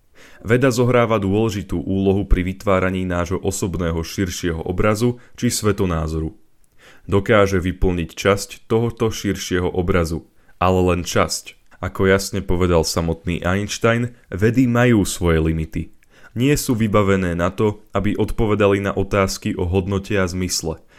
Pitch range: 90-110 Hz